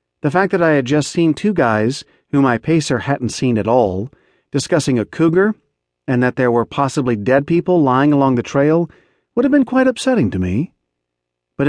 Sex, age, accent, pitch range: male, 40-59, American, 105-150 Hz